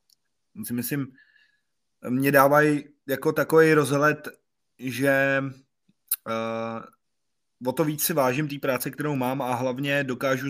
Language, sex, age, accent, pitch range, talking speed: Czech, male, 20-39, native, 120-140 Hz, 110 wpm